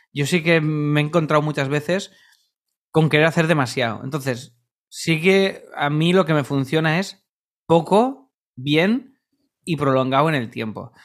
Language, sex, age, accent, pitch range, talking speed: Spanish, male, 20-39, Spanish, 130-175 Hz, 155 wpm